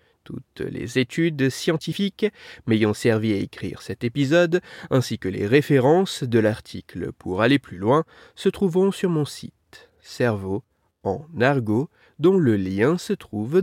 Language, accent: French, French